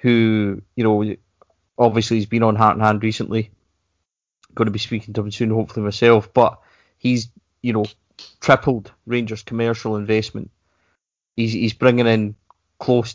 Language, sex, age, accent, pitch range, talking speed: English, male, 20-39, British, 110-120 Hz, 150 wpm